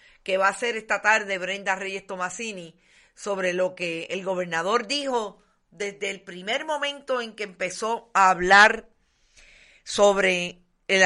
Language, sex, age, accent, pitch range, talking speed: Spanish, female, 50-69, American, 180-225 Hz, 140 wpm